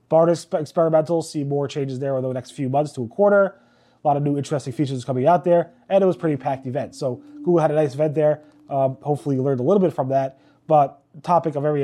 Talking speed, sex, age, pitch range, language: 260 wpm, male, 30-49, 140-170 Hz, English